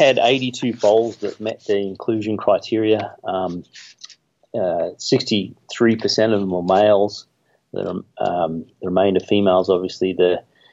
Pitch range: 90-105 Hz